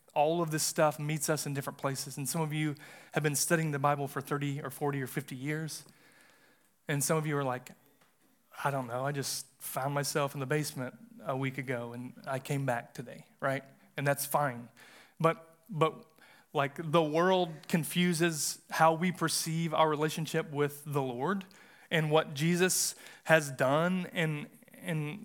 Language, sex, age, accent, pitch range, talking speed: English, male, 30-49, American, 145-170 Hz, 175 wpm